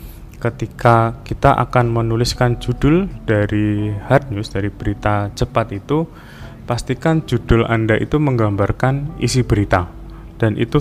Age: 20-39